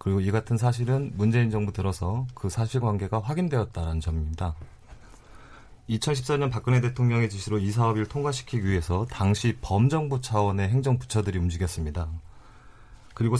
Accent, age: native, 30-49